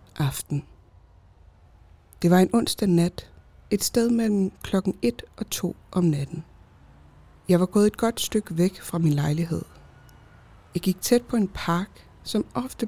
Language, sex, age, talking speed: Danish, female, 60-79, 155 wpm